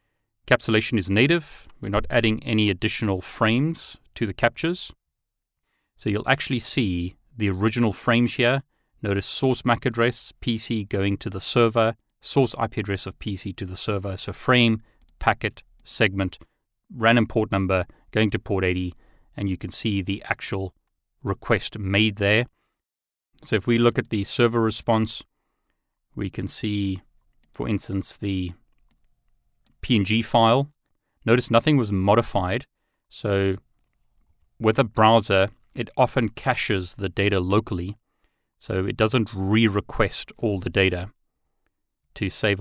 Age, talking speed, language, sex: 30-49, 135 wpm, English, male